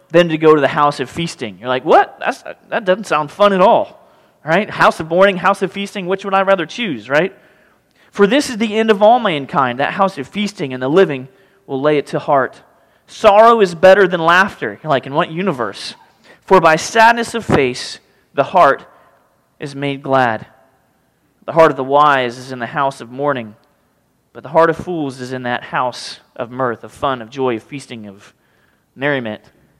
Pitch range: 135-195 Hz